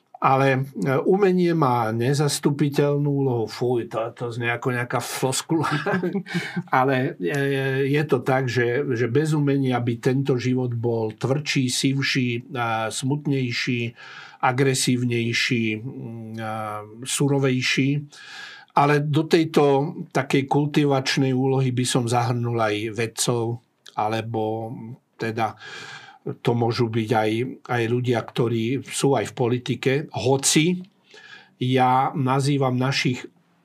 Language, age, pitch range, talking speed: Slovak, 50-69, 120-140 Hz, 100 wpm